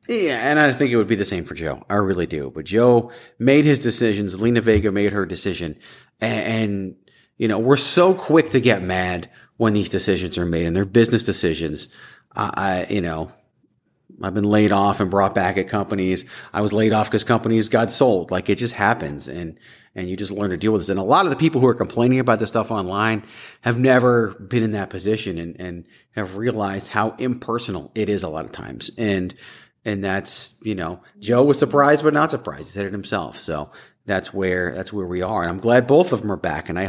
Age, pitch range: 30-49, 95-120 Hz